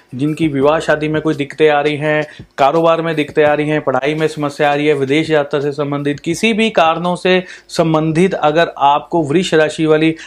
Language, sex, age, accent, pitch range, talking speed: Hindi, male, 30-49, native, 150-170 Hz, 195 wpm